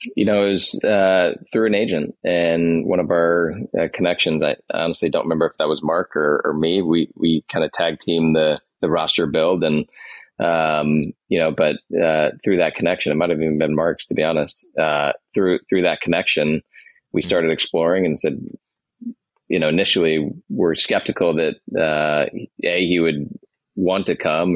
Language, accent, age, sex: English, American, 30-49, male